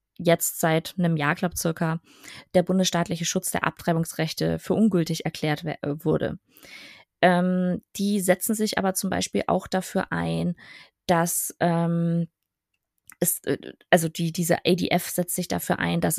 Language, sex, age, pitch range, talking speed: German, female, 20-39, 160-185 Hz, 140 wpm